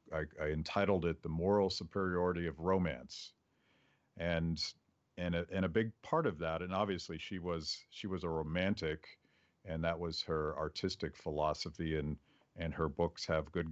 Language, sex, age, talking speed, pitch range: English, male, 50-69, 165 wpm, 80-95 Hz